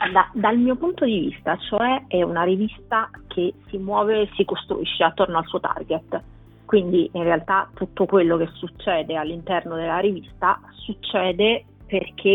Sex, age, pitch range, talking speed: female, 30-49, 170-200 Hz, 155 wpm